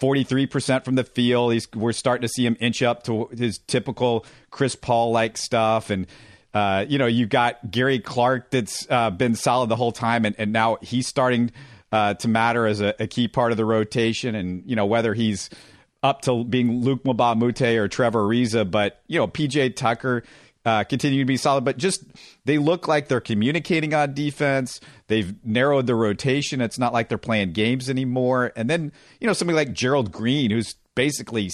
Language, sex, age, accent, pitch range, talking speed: English, male, 40-59, American, 115-140 Hz, 190 wpm